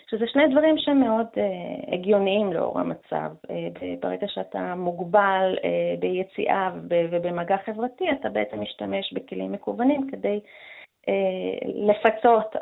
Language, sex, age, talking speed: Hebrew, female, 30-49, 120 wpm